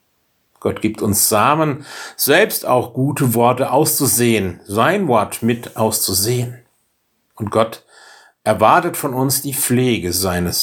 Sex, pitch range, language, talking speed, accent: male, 115-140 Hz, German, 120 wpm, German